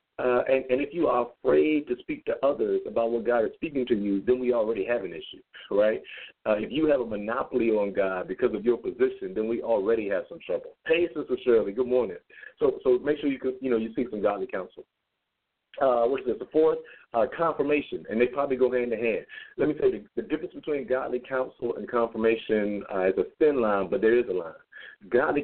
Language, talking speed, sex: English, 235 wpm, male